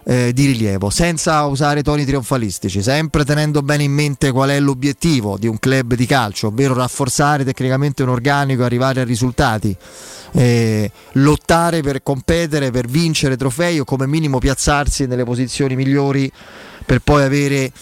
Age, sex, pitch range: 30-49, male, 125-155 Hz